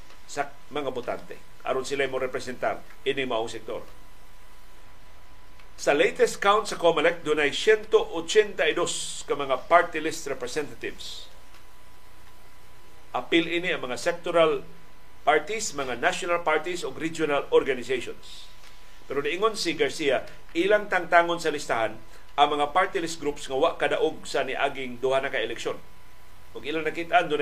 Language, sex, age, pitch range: Filipino, male, 50-69, 145-220 Hz